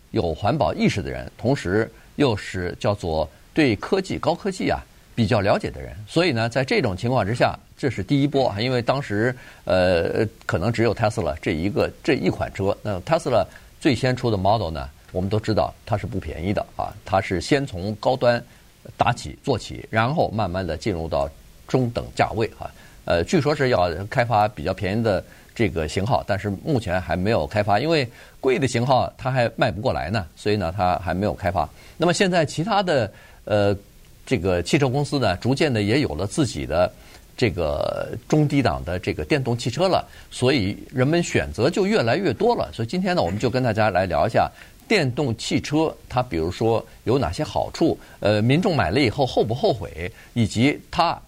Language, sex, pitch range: Chinese, male, 95-130 Hz